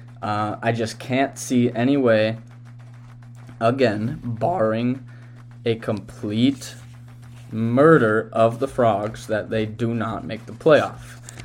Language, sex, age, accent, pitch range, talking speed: English, male, 20-39, American, 115-125 Hz, 115 wpm